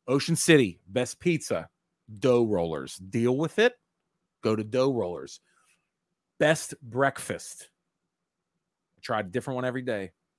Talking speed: 125 wpm